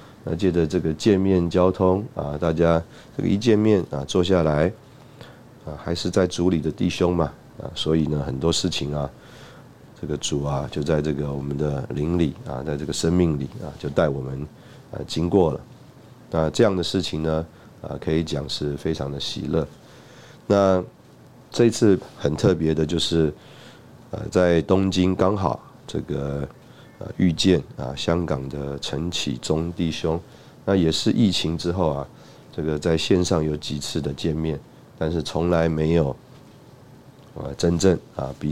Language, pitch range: Chinese, 75-95 Hz